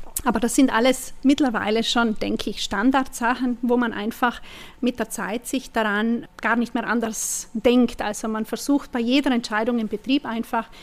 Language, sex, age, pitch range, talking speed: German, female, 30-49, 220-255 Hz, 170 wpm